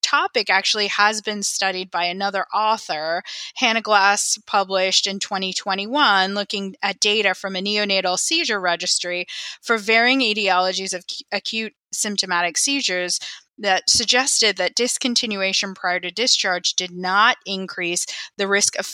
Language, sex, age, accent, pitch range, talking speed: English, female, 20-39, American, 185-225 Hz, 130 wpm